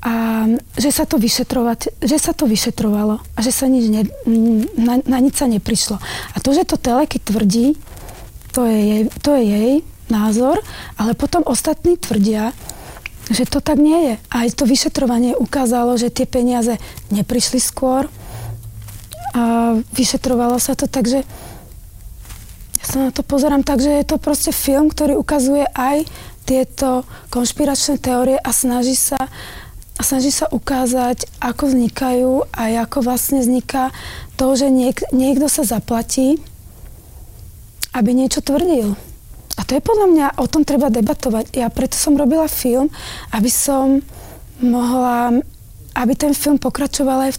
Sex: female